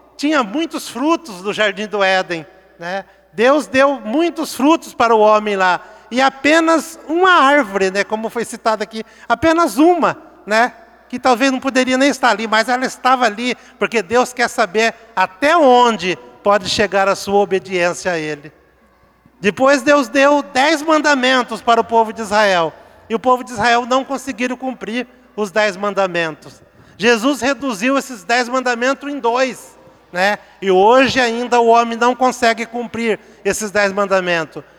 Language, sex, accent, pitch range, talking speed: Portuguese, male, Brazilian, 190-255 Hz, 160 wpm